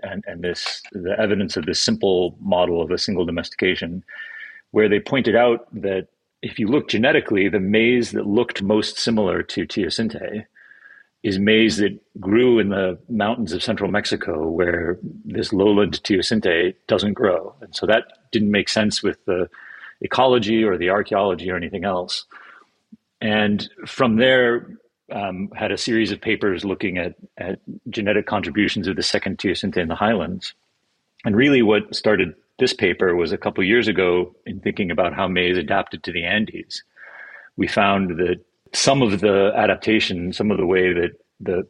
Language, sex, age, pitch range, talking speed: English, male, 40-59, 90-110 Hz, 165 wpm